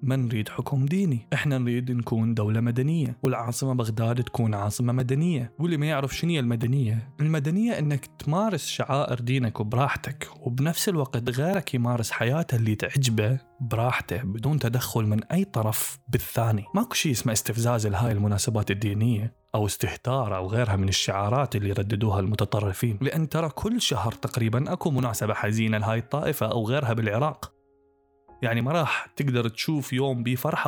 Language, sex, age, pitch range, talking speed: Arabic, male, 20-39, 115-140 Hz, 145 wpm